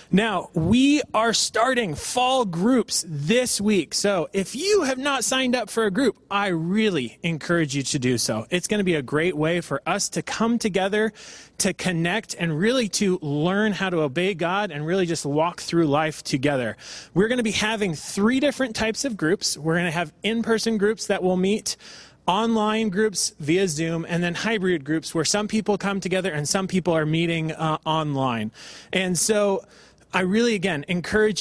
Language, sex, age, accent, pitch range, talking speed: English, male, 30-49, American, 160-215 Hz, 190 wpm